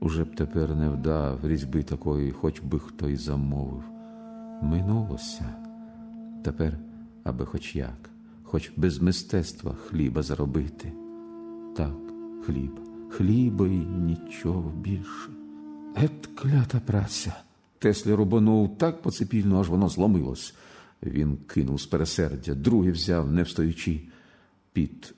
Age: 50-69